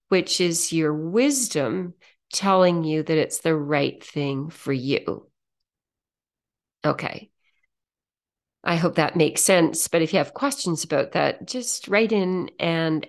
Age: 40-59